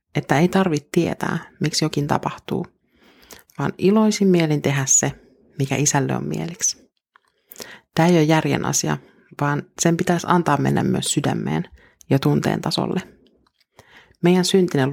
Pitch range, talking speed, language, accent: 145-175 Hz, 135 wpm, Finnish, native